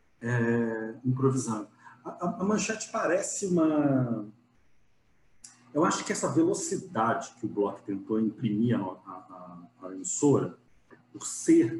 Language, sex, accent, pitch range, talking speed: Portuguese, male, Brazilian, 110-155 Hz, 125 wpm